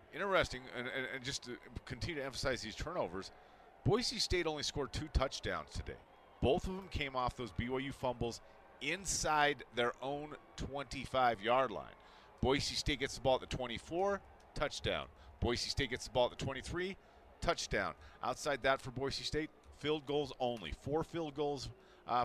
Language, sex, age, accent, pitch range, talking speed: English, male, 40-59, American, 110-135 Hz, 165 wpm